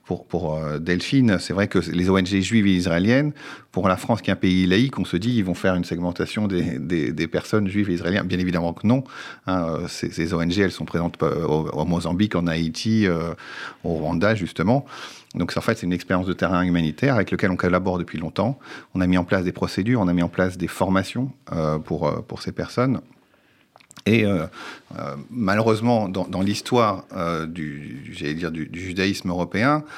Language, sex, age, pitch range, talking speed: French, male, 40-59, 85-105 Hz, 200 wpm